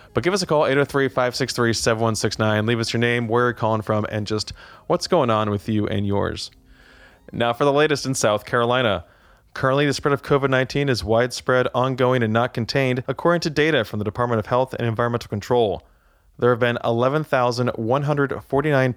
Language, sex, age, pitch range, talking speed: English, male, 20-39, 110-135 Hz, 175 wpm